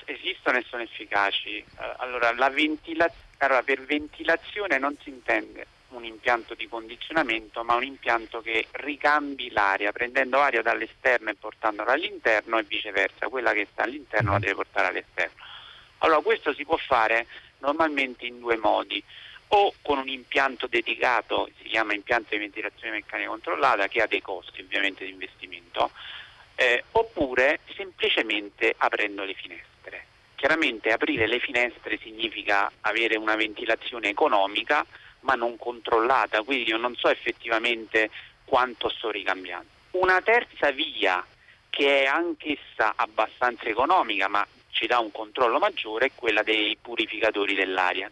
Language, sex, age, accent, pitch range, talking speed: Italian, male, 50-69, native, 110-145 Hz, 140 wpm